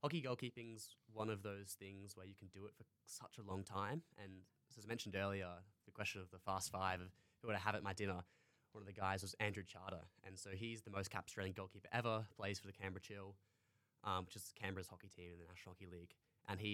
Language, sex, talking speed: English, male, 245 wpm